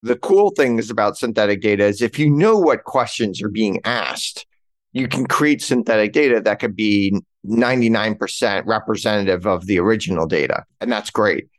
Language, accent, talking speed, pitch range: English, American, 170 wpm, 110-130 Hz